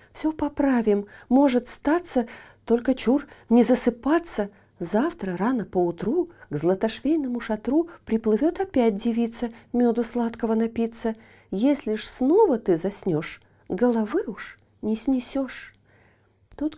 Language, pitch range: Russian, 190-275 Hz